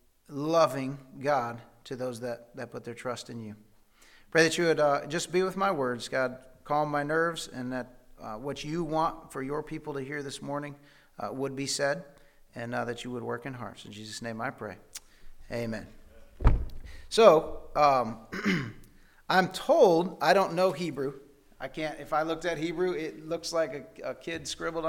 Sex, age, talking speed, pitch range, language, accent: male, 40-59, 190 wpm, 125-165 Hz, English, American